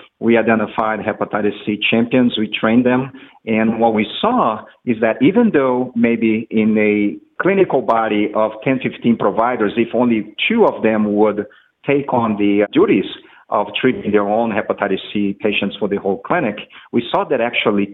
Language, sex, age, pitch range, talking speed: English, male, 50-69, 100-115 Hz, 170 wpm